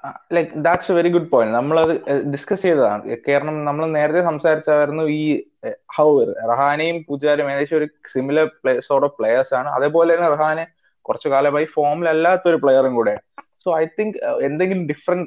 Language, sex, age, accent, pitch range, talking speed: English, male, 20-39, Indian, 145-180 Hz, 115 wpm